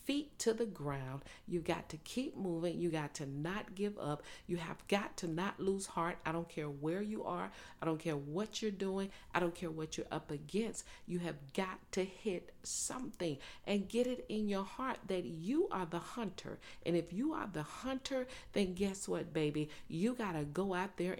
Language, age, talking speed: English, 40-59, 205 wpm